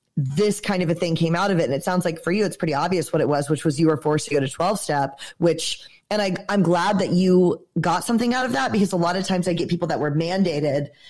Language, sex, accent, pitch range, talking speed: English, female, American, 165-200 Hz, 300 wpm